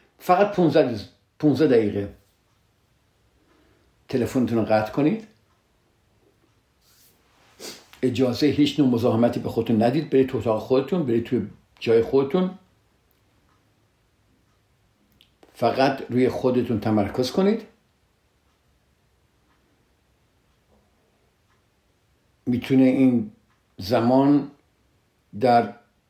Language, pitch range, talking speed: Persian, 110-140 Hz, 75 wpm